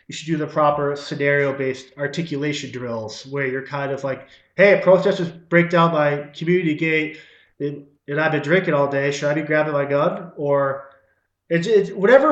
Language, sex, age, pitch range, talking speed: English, male, 20-39, 135-170 Hz, 165 wpm